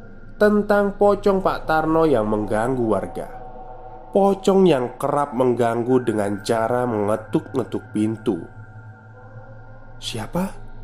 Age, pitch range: 20-39, 110-145 Hz